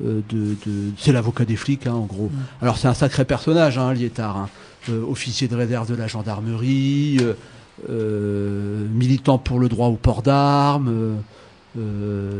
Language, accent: French, French